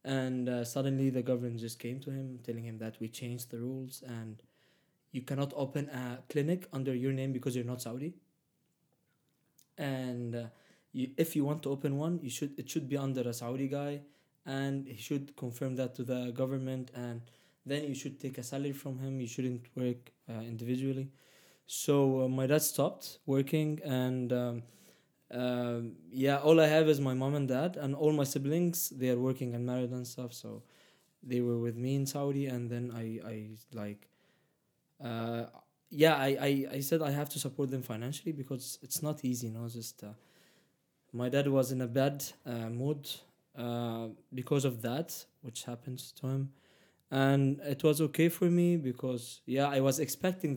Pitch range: 125-145 Hz